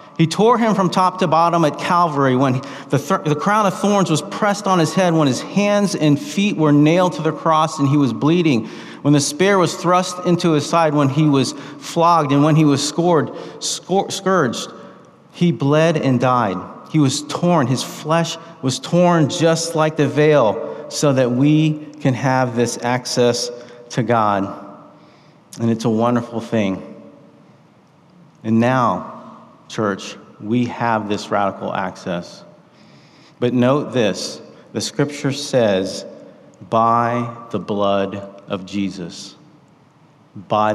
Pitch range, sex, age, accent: 115-155 Hz, male, 40-59, American